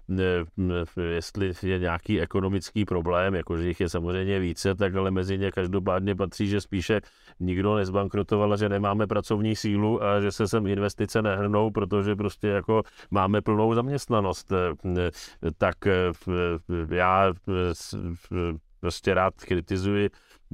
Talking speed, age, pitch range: 125 wpm, 40-59, 90-105 Hz